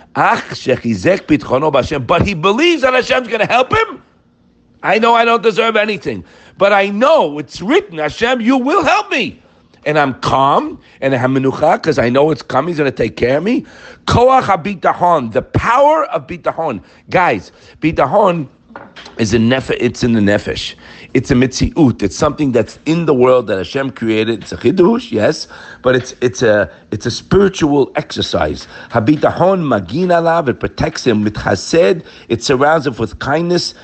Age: 50-69